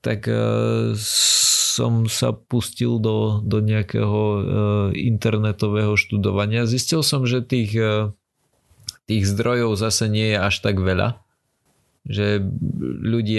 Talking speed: 105 wpm